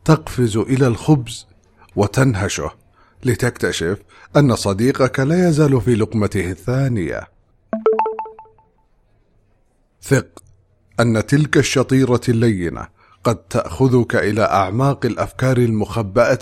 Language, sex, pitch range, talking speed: English, male, 100-130 Hz, 85 wpm